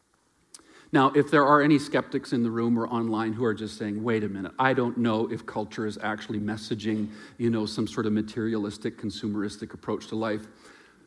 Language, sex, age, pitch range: English, male, 40-59, 110-145 Hz